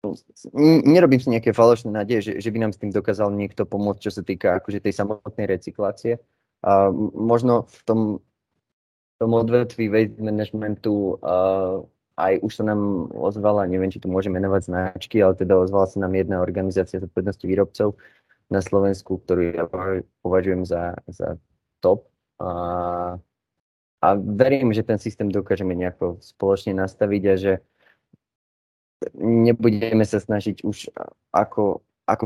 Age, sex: 20-39, male